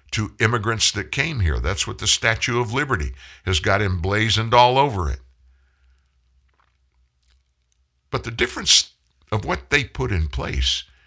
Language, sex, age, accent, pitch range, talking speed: English, male, 60-79, American, 75-115 Hz, 140 wpm